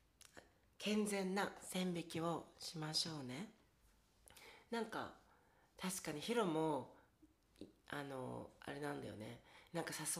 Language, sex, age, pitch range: Japanese, female, 40-59, 140-185 Hz